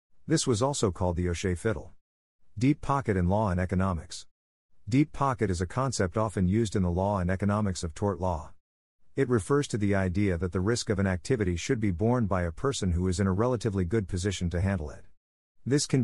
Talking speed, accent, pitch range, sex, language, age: 215 wpm, American, 90-115 Hz, male, English, 50-69